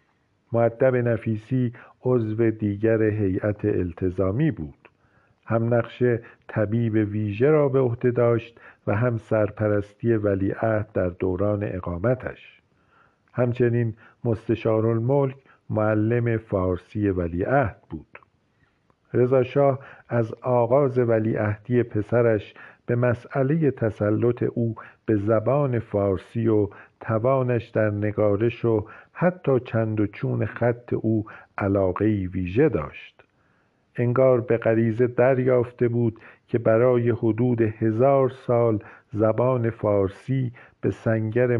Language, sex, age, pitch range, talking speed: Persian, male, 50-69, 105-125 Hz, 100 wpm